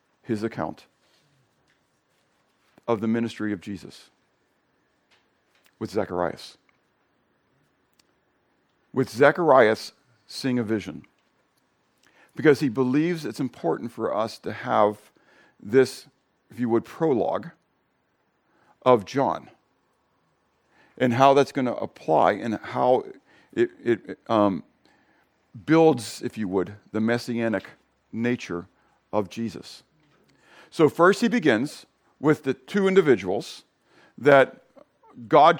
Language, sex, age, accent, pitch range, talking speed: English, male, 50-69, American, 110-150 Hz, 100 wpm